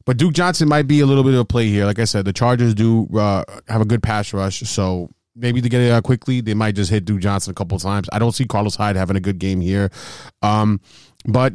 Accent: American